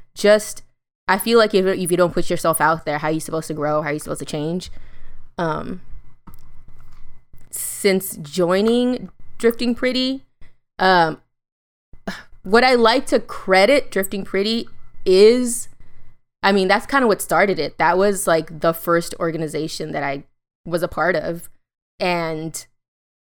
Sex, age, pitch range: female, 20-39, 170-210 Hz